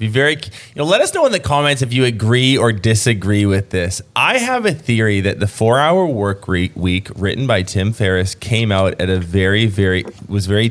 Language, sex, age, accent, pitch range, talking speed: English, male, 20-39, American, 100-130 Hz, 220 wpm